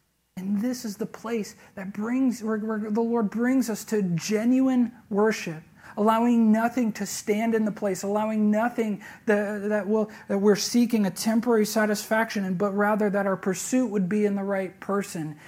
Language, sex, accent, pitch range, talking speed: English, male, American, 210-255 Hz, 165 wpm